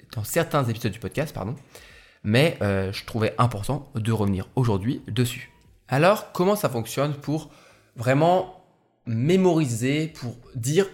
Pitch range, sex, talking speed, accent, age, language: 110-150 Hz, male, 130 wpm, French, 20-39, French